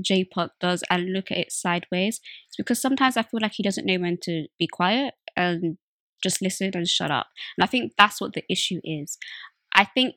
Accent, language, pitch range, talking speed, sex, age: British, English, 185-220 Hz, 220 wpm, female, 20-39